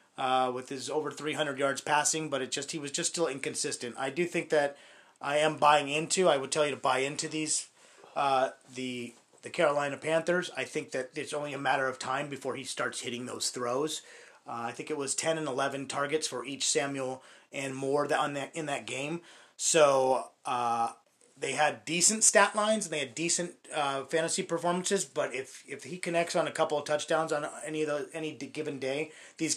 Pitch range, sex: 130-155 Hz, male